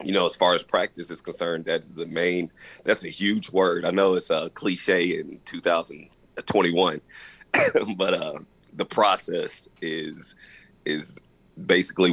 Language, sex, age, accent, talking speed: English, male, 40-59, American, 165 wpm